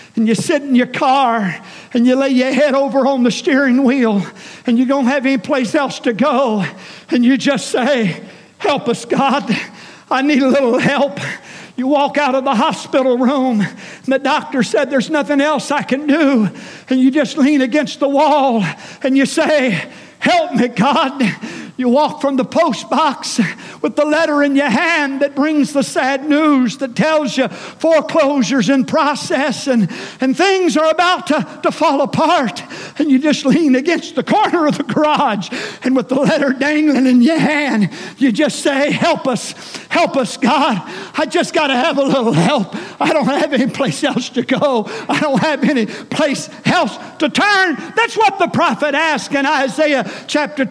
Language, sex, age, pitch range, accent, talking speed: English, male, 50-69, 255-295 Hz, American, 185 wpm